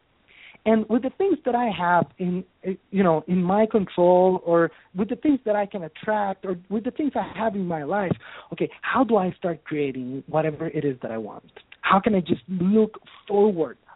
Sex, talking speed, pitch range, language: male, 205 wpm, 185-255 Hz, English